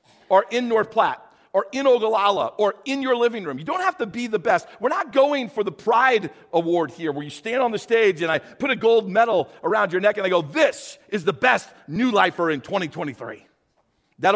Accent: American